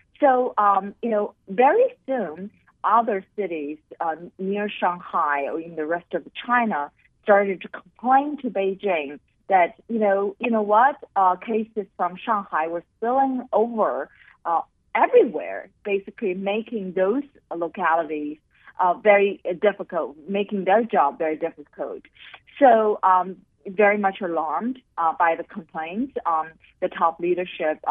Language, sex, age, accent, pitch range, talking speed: English, female, 50-69, American, 170-220 Hz, 130 wpm